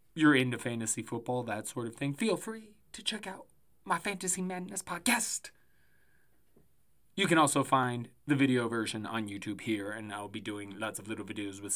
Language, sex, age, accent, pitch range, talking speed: English, male, 20-39, American, 115-150 Hz, 185 wpm